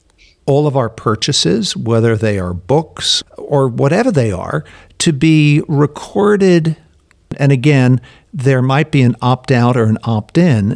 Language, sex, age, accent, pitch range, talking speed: English, male, 50-69, American, 110-140 Hz, 140 wpm